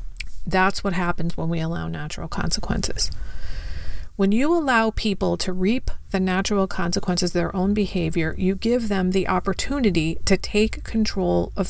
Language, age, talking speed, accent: English, 40-59, 155 wpm, American